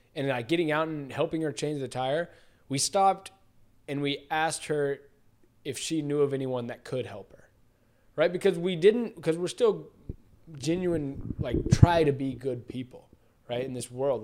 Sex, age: male, 20-39